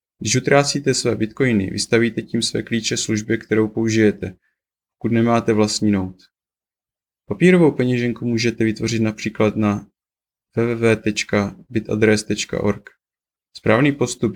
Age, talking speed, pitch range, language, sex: 20-39, 100 wpm, 105-120 Hz, Czech, male